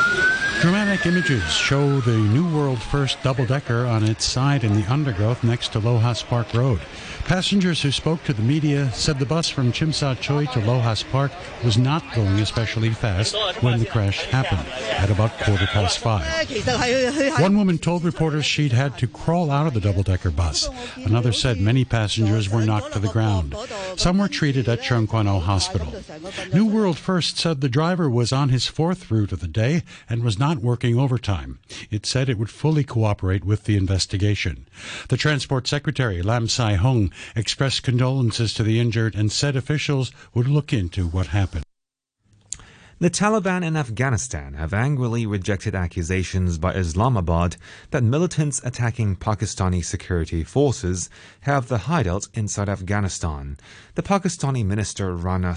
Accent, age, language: American, 60-79, English